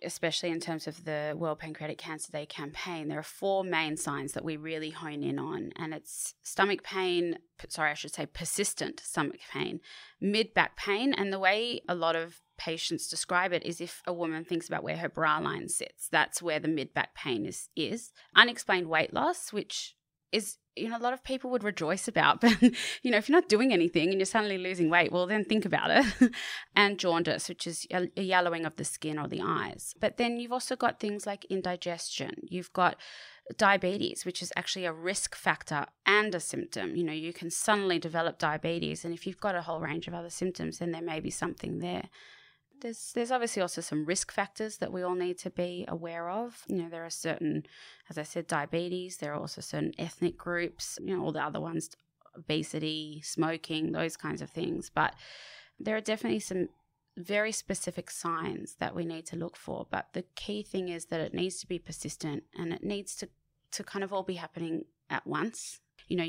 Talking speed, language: 205 wpm, English